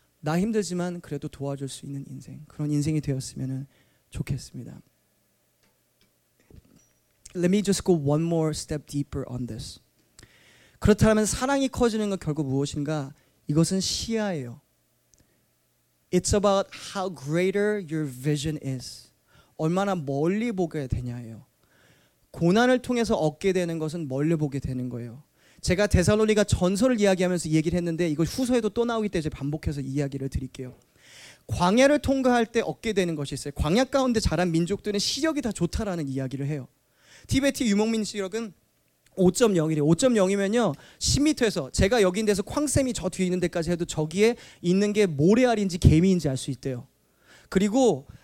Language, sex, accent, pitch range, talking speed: English, male, Korean, 140-210 Hz, 125 wpm